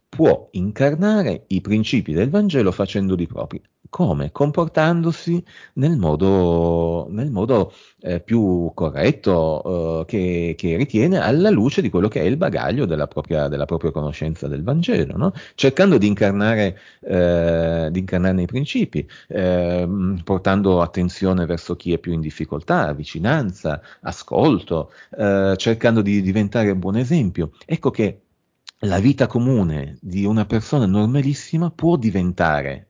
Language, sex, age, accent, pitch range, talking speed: Italian, male, 40-59, native, 90-120 Hz, 130 wpm